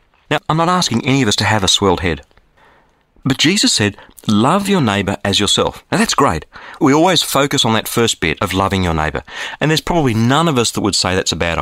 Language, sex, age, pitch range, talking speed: English, male, 40-59, 95-140 Hz, 240 wpm